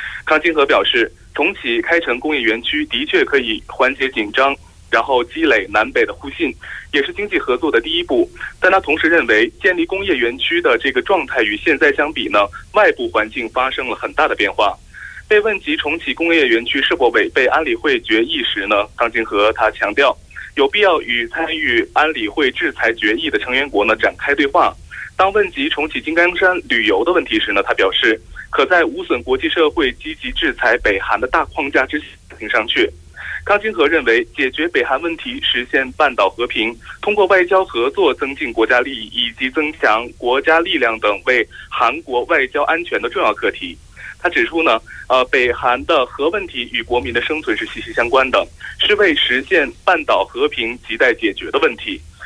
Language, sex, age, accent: Korean, male, 30-49, Chinese